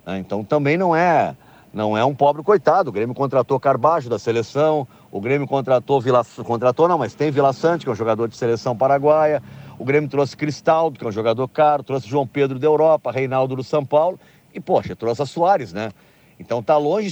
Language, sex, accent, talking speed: Portuguese, male, Brazilian, 205 wpm